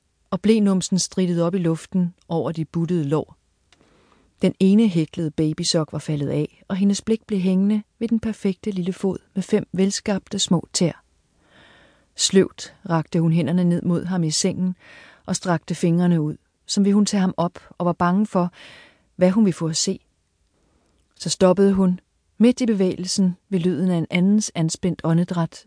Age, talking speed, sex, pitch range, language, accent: 40-59, 175 wpm, female, 160-195 Hz, Danish, native